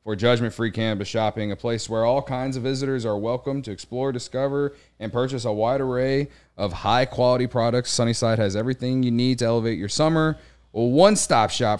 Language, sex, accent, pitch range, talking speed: English, male, American, 100-130 Hz, 185 wpm